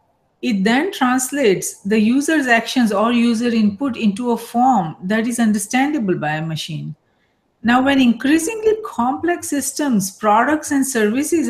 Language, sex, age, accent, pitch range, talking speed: English, female, 40-59, Indian, 210-270 Hz, 135 wpm